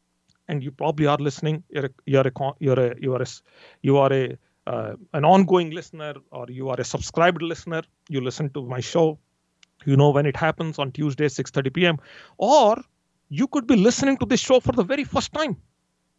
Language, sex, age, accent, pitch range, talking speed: English, male, 40-59, Indian, 140-205 Hz, 200 wpm